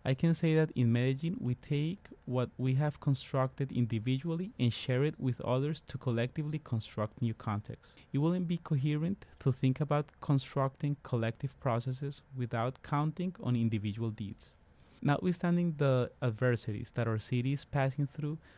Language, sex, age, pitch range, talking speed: English, male, 20-39, 115-145 Hz, 150 wpm